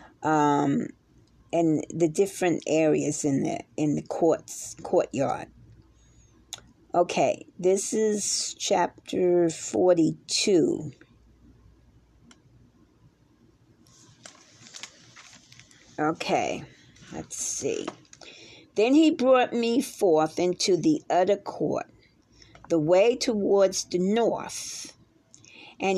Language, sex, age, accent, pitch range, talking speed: English, female, 50-69, American, 165-220 Hz, 80 wpm